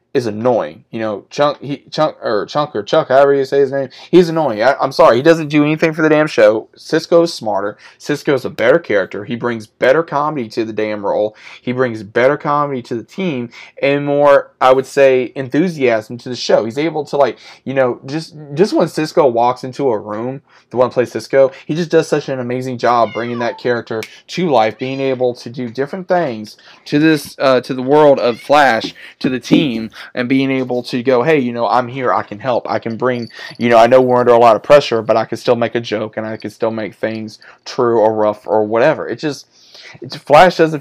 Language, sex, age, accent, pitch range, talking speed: English, male, 20-39, American, 115-140 Hz, 230 wpm